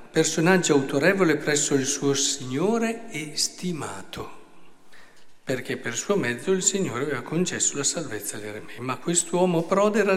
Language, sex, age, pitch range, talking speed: Italian, male, 50-69, 145-210 Hz, 140 wpm